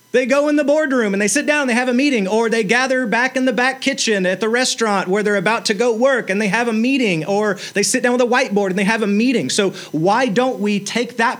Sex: male